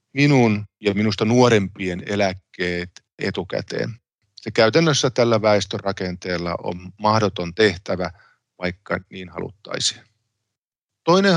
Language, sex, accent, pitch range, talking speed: Finnish, male, native, 100-120 Hz, 90 wpm